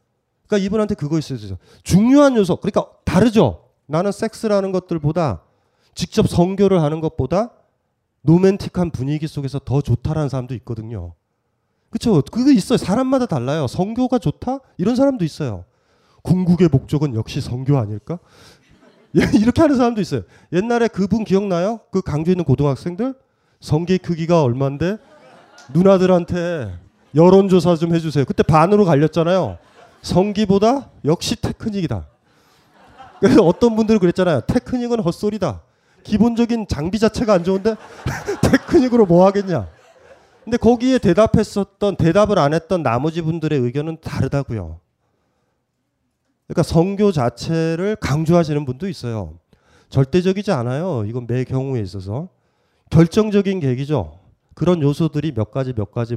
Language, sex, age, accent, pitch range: Korean, male, 30-49, native, 130-205 Hz